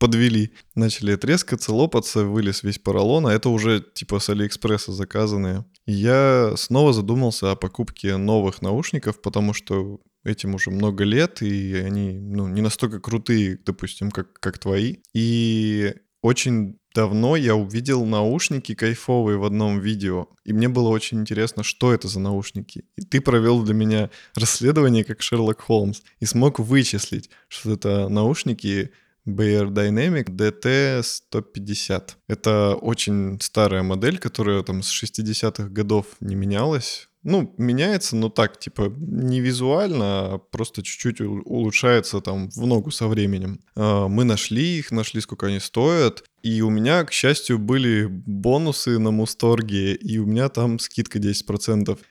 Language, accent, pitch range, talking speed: Russian, native, 100-120 Hz, 145 wpm